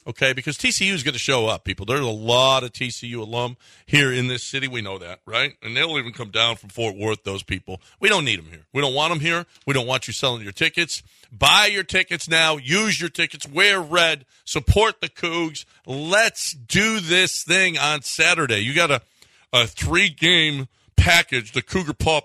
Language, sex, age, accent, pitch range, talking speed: English, male, 40-59, American, 120-160 Hz, 210 wpm